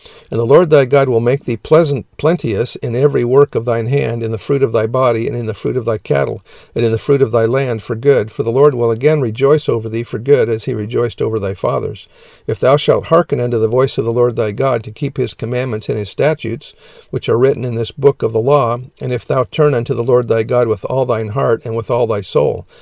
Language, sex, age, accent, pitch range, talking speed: English, male, 50-69, American, 115-140 Hz, 265 wpm